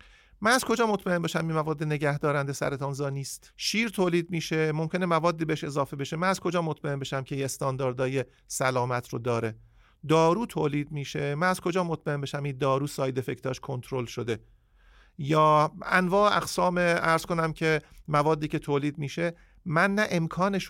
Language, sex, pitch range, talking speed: Persian, male, 130-170 Hz, 160 wpm